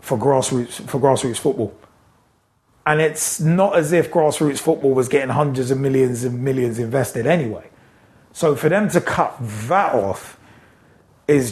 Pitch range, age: 125-155 Hz, 30-49